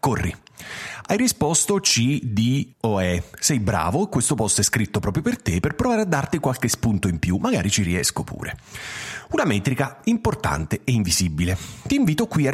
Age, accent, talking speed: 40-59, native, 175 wpm